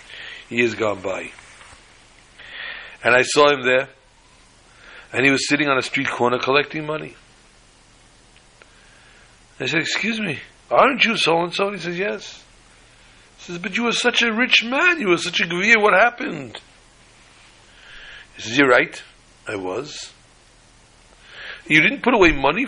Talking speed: 145 wpm